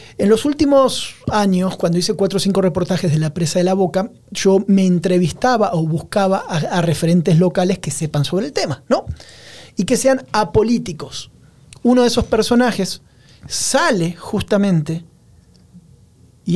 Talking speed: 150 wpm